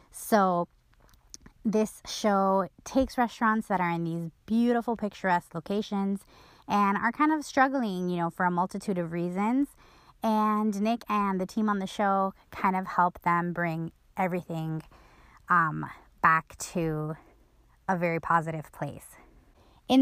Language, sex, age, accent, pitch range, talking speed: English, female, 20-39, American, 170-210 Hz, 140 wpm